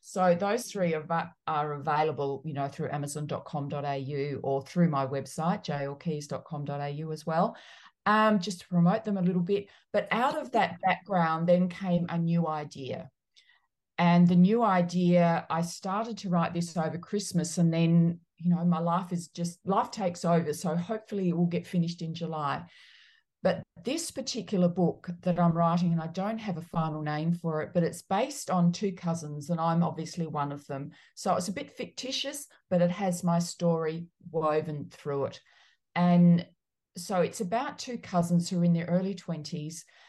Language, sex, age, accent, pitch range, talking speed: English, female, 40-59, Australian, 160-185 Hz, 175 wpm